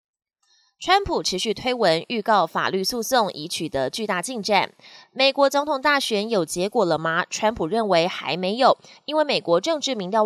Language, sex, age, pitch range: Chinese, female, 20-39, 185-260 Hz